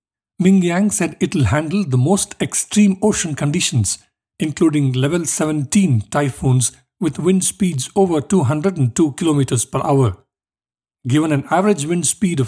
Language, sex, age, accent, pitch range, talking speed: English, male, 50-69, Indian, 130-180 Hz, 135 wpm